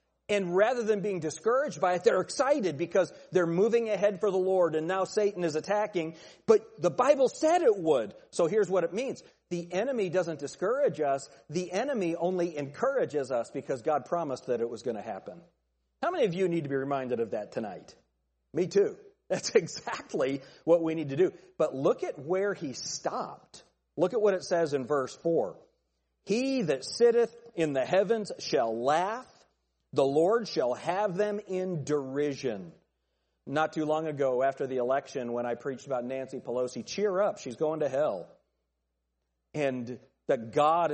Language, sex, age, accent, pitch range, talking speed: English, male, 40-59, American, 135-210 Hz, 180 wpm